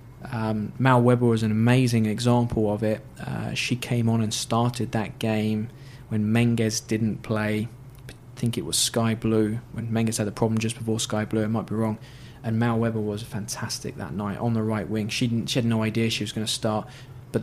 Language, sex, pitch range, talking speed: English, male, 110-125 Hz, 215 wpm